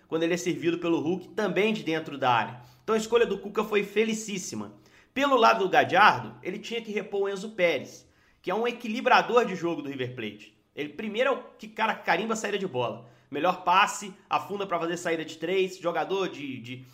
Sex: male